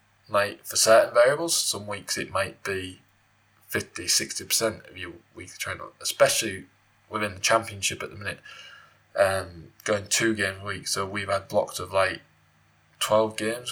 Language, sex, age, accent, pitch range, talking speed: English, male, 10-29, British, 100-110 Hz, 155 wpm